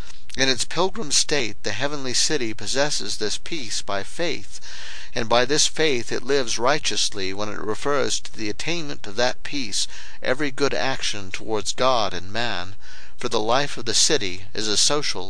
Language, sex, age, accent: English, male, 50-69, American